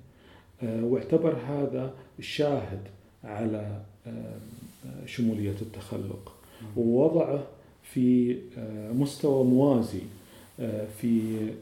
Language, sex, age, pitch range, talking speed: Arabic, male, 40-59, 105-130 Hz, 50 wpm